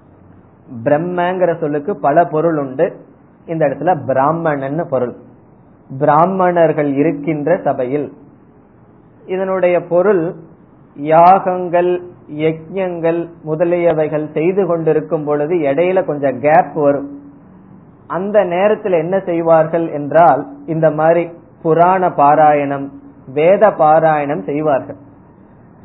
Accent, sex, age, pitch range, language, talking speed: native, male, 20-39, 150-180 Hz, Tamil, 65 wpm